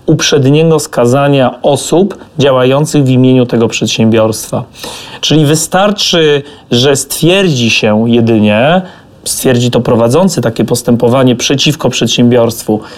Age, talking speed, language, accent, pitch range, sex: 30-49, 95 wpm, Polish, native, 125-150 Hz, male